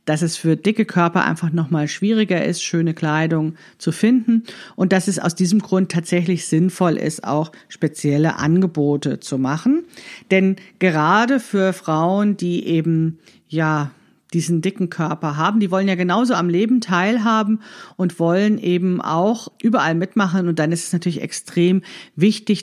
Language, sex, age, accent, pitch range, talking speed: German, female, 50-69, German, 160-205 Hz, 155 wpm